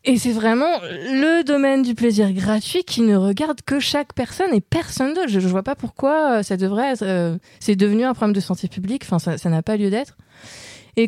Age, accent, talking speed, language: 20-39, French, 220 wpm, French